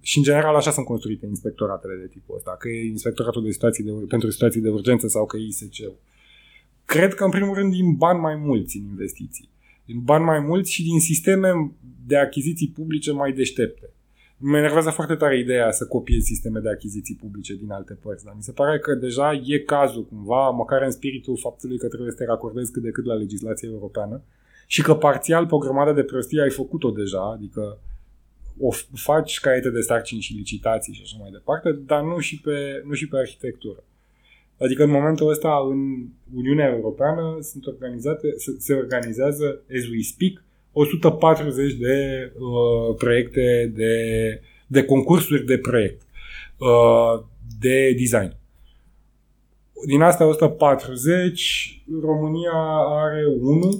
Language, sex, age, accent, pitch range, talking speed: Romanian, male, 20-39, native, 115-150 Hz, 160 wpm